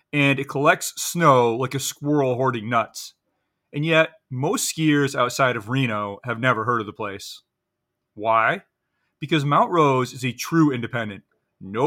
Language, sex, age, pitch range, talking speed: English, male, 30-49, 115-140 Hz, 155 wpm